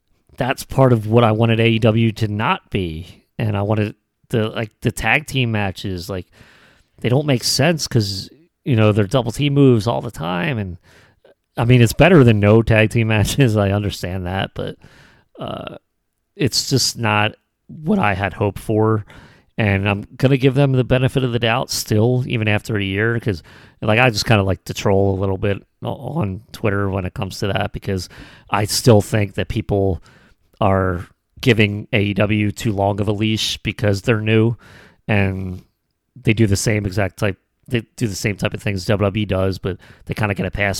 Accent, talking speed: American, 195 wpm